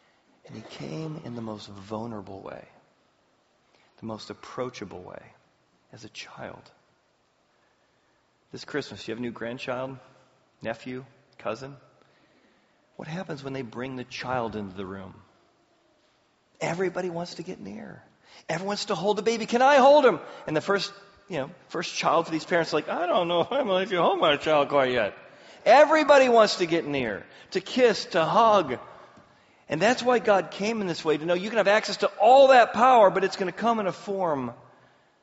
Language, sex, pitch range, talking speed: English, male, 120-180 Hz, 180 wpm